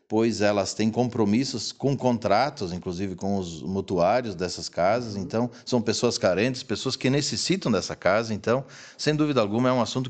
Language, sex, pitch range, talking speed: Portuguese, male, 95-115 Hz, 165 wpm